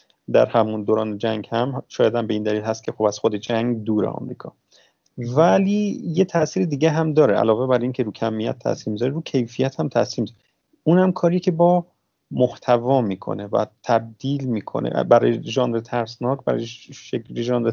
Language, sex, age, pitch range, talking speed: Persian, male, 30-49, 115-145 Hz, 175 wpm